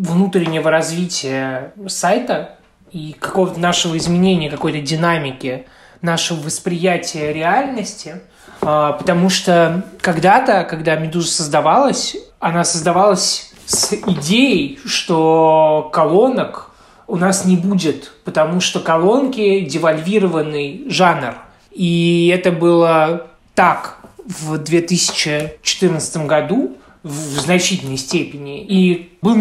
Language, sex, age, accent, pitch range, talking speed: Russian, male, 20-39, native, 165-200 Hz, 90 wpm